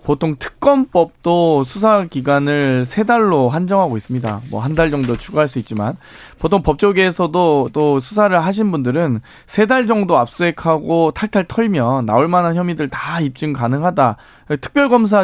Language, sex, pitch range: Korean, male, 135-185 Hz